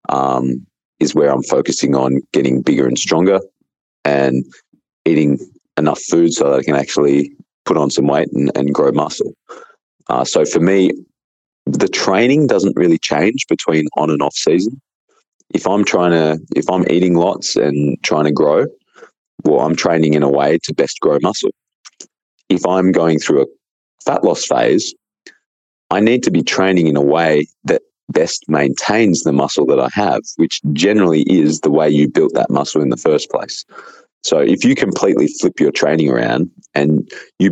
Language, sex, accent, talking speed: English, male, Australian, 175 wpm